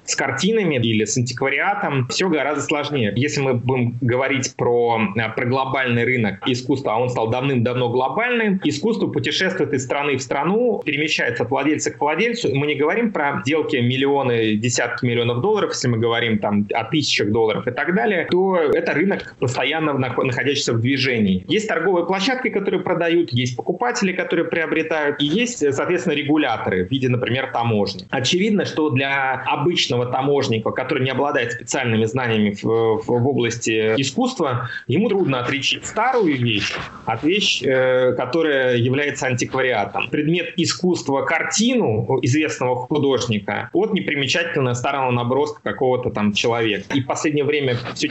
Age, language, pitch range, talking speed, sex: 30-49, Russian, 120-160 Hz, 150 wpm, male